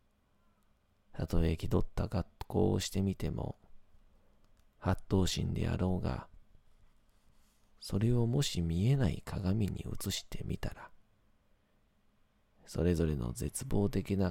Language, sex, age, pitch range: Japanese, male, 40-59, 85-105 Hz